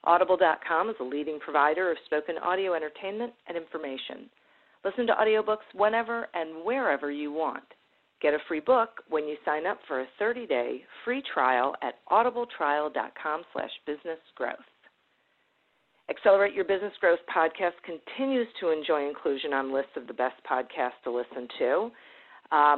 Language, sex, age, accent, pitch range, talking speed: English, female, 50-69, American, 145-200 Hz, 140 wpm